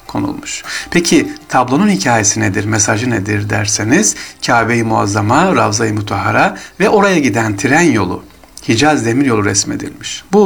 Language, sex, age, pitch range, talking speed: Turkish, male, 60-79, 110-150 Hz, 120 wpm